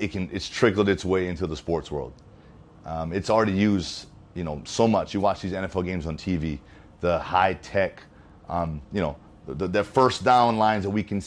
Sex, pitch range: male, 85-110 Hz